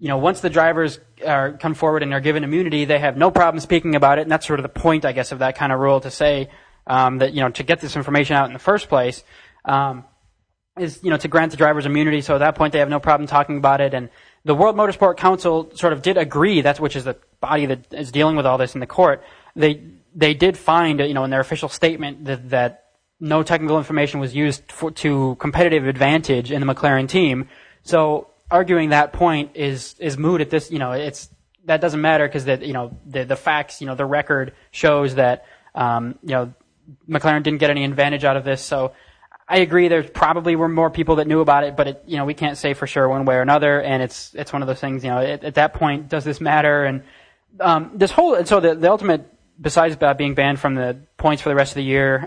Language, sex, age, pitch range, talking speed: English, male, 20-39, 135-160 Hz, 250 wpm